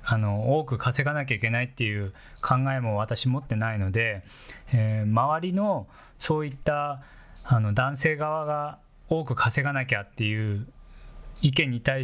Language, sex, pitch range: Japanese, male, 110-145 Hz